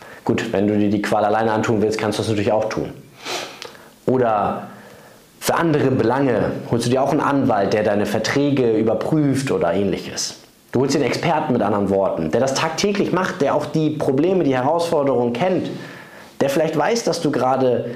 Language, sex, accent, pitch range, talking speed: German, male, German, 105-145 Hz, 185 wpm